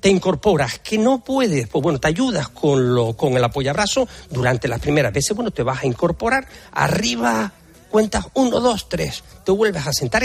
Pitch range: 140-215 Hz